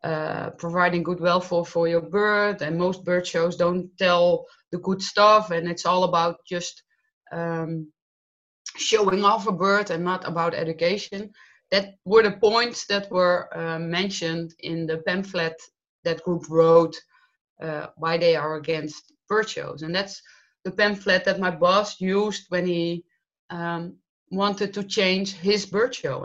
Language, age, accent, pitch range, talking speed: English, 20-39, Dutch, 165-195 Hz, 155 wpm